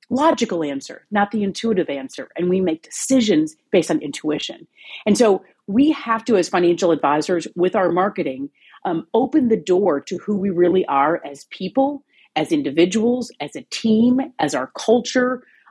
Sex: female